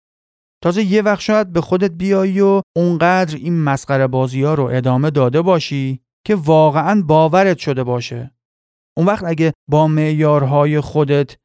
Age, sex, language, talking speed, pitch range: 30-49, male, Persian, 145 wpm, 135-170 Hz